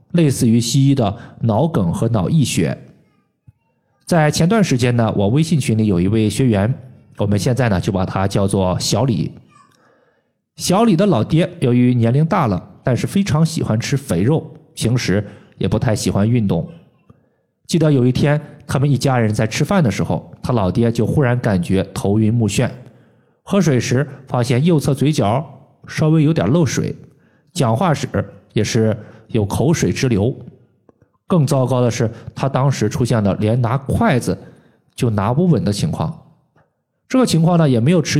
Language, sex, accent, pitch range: Chinese, male, native, 115-155 Hz